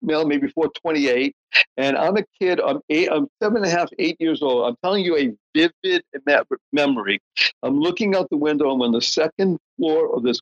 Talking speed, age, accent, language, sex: 195 wpm, 60-79, American, English, male